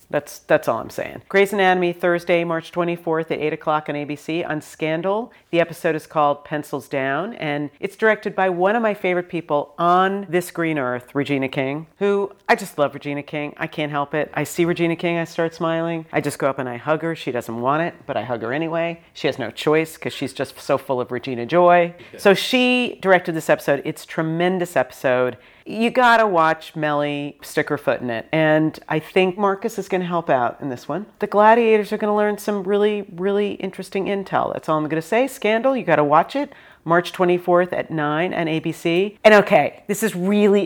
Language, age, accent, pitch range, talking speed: English, 40-59, American, 150-185 Hz, 215 wpm